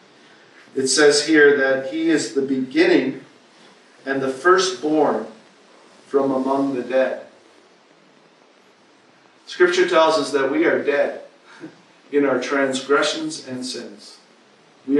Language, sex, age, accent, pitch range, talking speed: German, male, 50-69, American, 135-170 Hz, 110 wpm